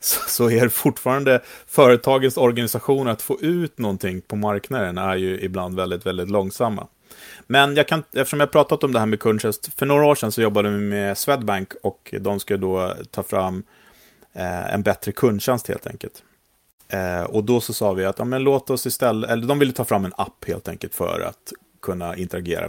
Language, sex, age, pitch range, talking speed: Swedish, male, 30-49, 95-125 Hz, 200 wpm